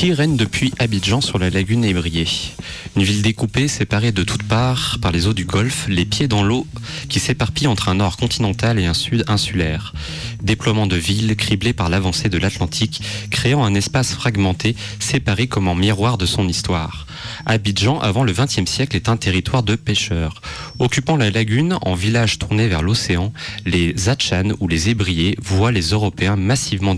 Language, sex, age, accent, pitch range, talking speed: French, male, 30-49, French, 95-120 Hz, 180 wpm